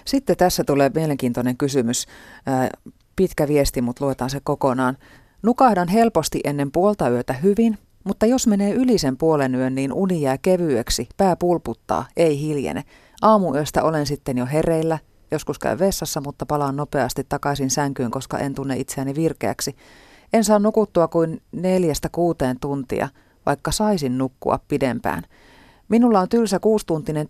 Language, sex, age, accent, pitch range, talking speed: Finnish, female, 30-49, native, 135-185 Hz, 145 wpm